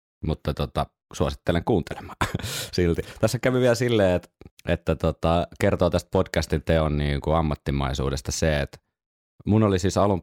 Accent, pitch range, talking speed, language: native, 70-95 Hz, 145 wpm, Finnish